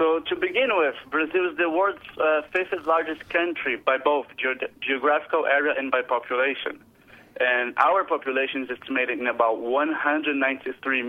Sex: male